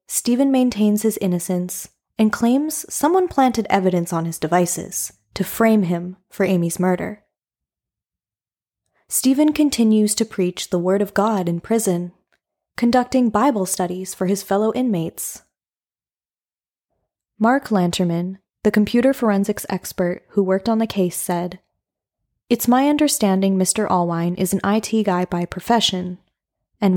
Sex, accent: female, American